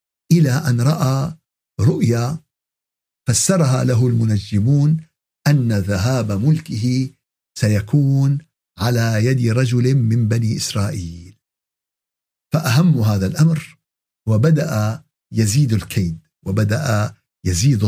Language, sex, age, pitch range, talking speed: Arabic, male, 60-79, 115-160 Hz, 85 wpm